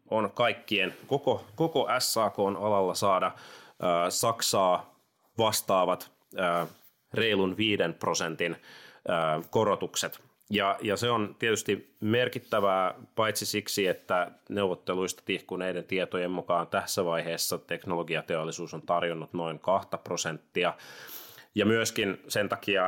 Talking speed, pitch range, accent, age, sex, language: 110 wpm, 90-110 Hz, native, 30-49, male, Finnish